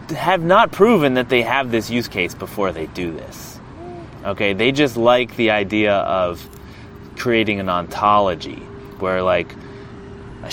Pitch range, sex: 100-130 Hz, male